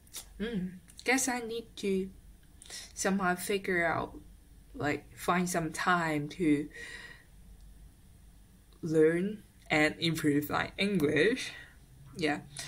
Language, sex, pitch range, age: Chinese, female, 150-215 Hz, 10-29